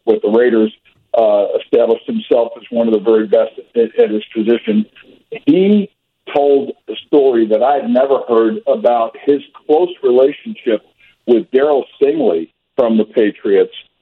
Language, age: English, 50-69